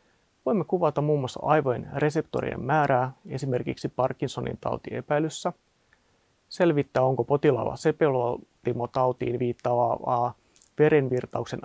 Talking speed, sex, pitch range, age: 95 wpm, male, 125-155 Hz, 30-49